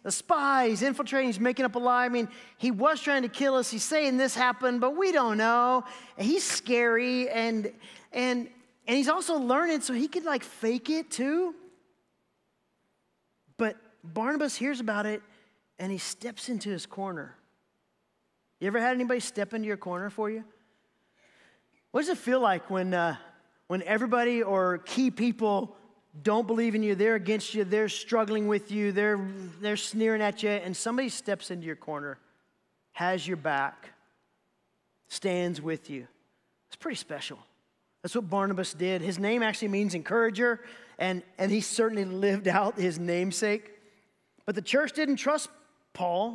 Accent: American